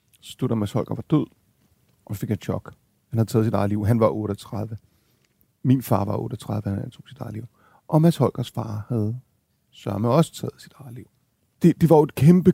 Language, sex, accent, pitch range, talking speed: Danish, male, native, 115-150 Hz, 225 wpm